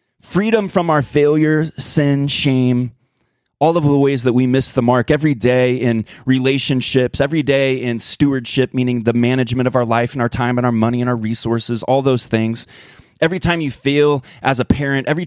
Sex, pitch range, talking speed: male, 115-145 Hz, 195 wpm